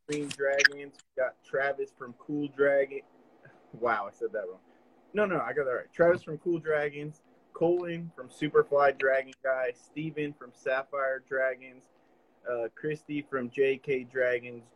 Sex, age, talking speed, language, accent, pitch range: male, 20-39, 140 wpm, English, American, 125-155 Hz